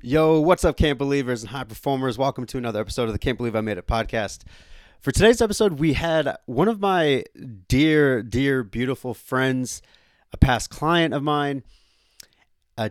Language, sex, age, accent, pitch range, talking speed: English, male, 30-49, American, 115-150 Hz, 175 wpm